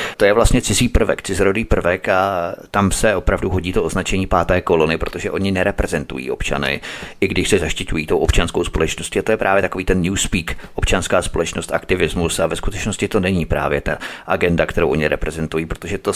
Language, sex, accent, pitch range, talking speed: Czech, male, native, 90-115 Hz, 185 wpm